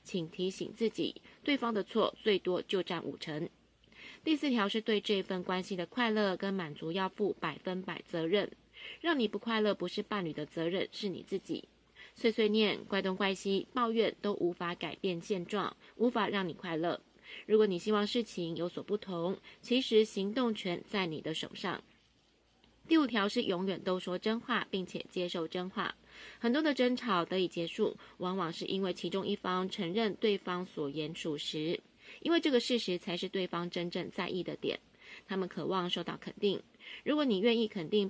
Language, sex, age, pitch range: Chinese, female, 20-39, 175-220 Hz